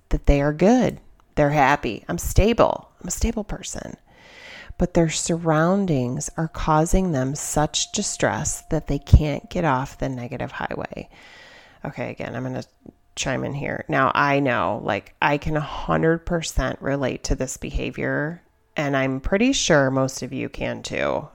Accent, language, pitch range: American, English, 135-170 Hz